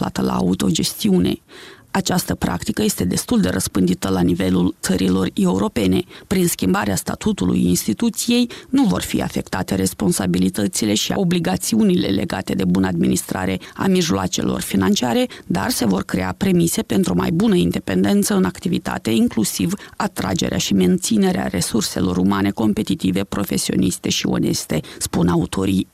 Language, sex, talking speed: Romanian, female, 125 wpm